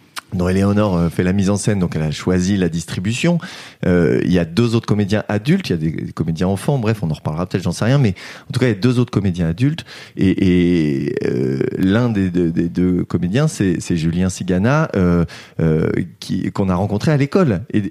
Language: French